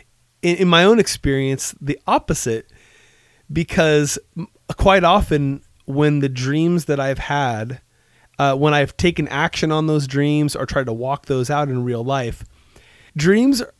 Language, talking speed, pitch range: English, 145 wpm, 135-165 Hz